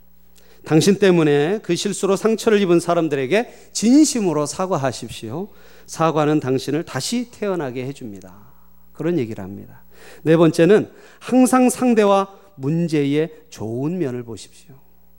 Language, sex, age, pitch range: Korean, male, 40-59, 110-180 Hz